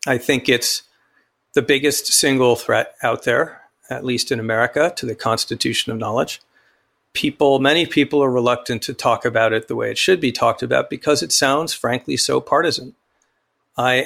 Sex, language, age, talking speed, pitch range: male, English, 50-69, 175 wpm, 120-140 Hz